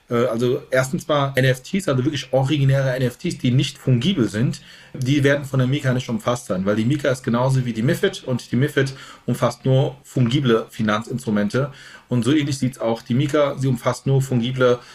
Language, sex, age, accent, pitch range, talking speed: German, male, 30-49, German, 120-140 Hz, 190 wpm